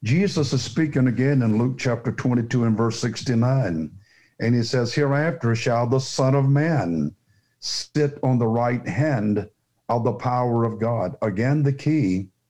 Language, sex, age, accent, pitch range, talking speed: English, male, 60-79, American, 115-140 Hz, 160 wpm